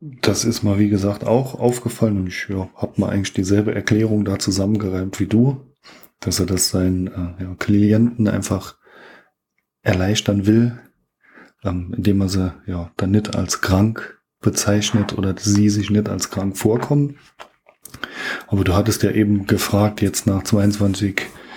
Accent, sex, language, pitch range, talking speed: German, male, German, 100-115 Hz, 145 wpm